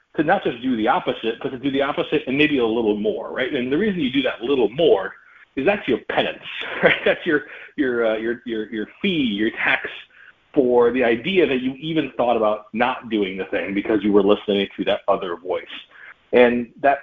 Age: 40-59